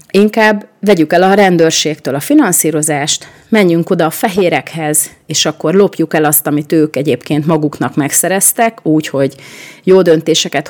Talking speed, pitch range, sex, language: 140 wpm, 150-180 Hz, female, Hungarian